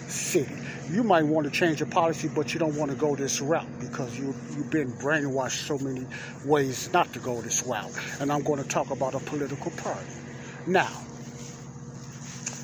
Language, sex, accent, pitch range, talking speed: English, male, American, 125-155 Hz, 185 wpm